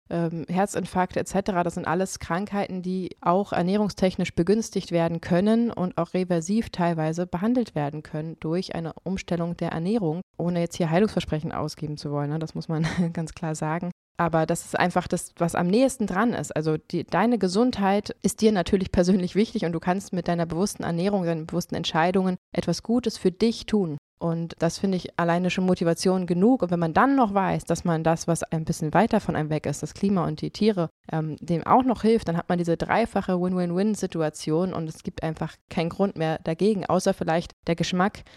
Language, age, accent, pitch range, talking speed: German, 20-39, German, 165-195 Hz, 195 wpm